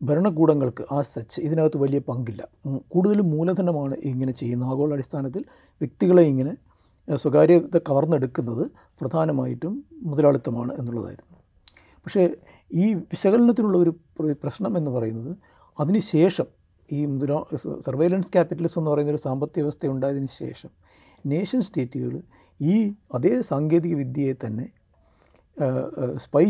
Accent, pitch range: native, 130-170 Hz